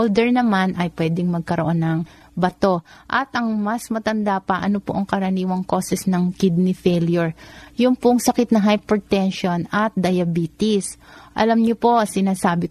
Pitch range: 180-215 Hz